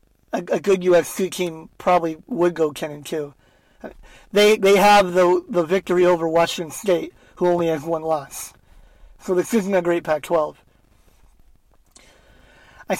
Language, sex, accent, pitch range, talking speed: English, male, American, 175-205 Hz, 150 wpm